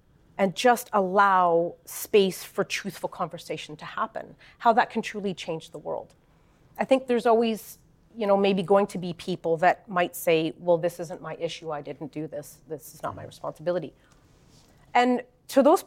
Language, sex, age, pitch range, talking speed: English, female, 30-49, 170-220 Hz, 180 wpm